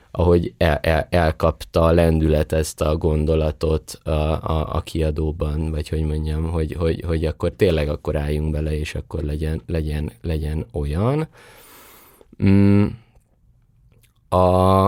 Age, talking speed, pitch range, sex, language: 20-39, 125 wpm, 80-105 Hz, male, Hungarian